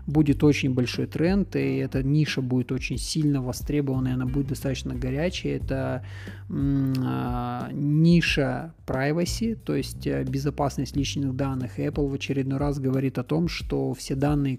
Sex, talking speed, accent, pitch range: male, 150 wpm, native, 130-145 Hz